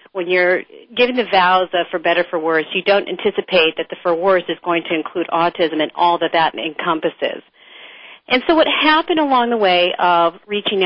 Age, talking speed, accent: 40-59, 200 wpm, American